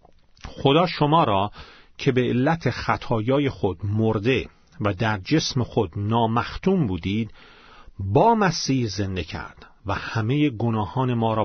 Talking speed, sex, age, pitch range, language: 125 wpm, male, 40-59, 105-150 Hz, Persian